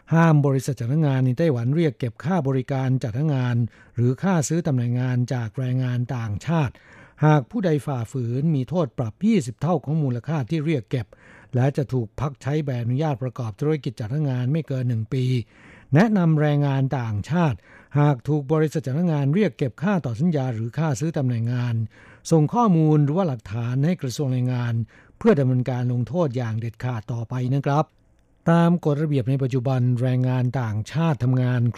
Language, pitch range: Thai, 125-155 Hz